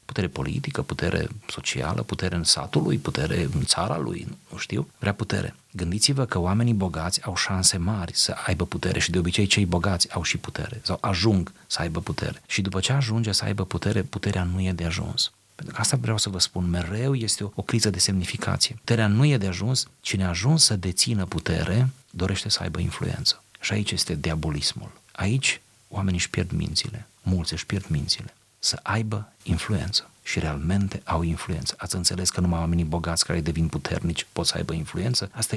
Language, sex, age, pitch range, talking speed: Romanian, male, 40-59, 90-115 Hz, 190 wpm